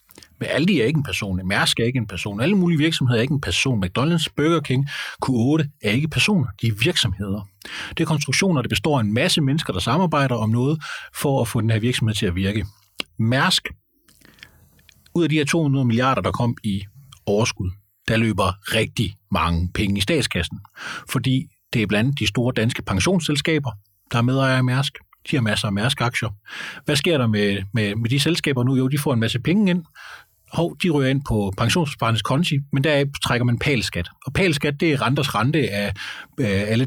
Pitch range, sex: 110-155 Hz, male